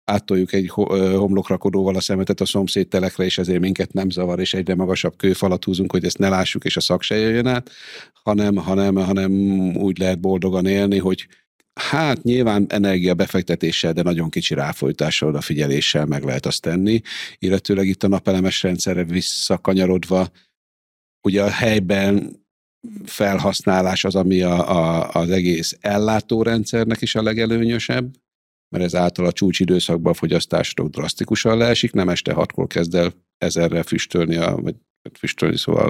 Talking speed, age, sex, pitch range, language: 145 wpm, 50-69, male, 90-100 Hz, Hungarian